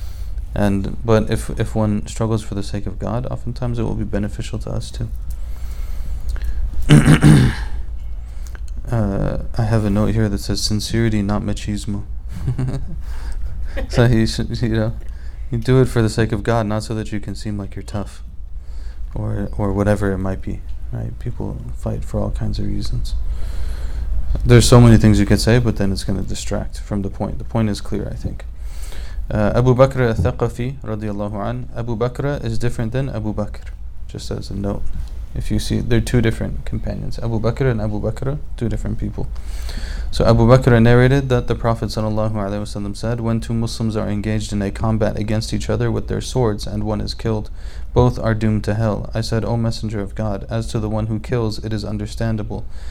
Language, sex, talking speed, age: English, male, 190 wpm, 30-49